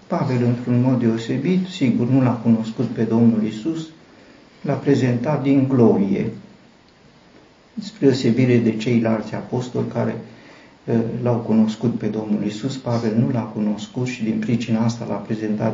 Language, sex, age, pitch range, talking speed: Romanian, male, 50-69, 115-135 Hz, 135 wpm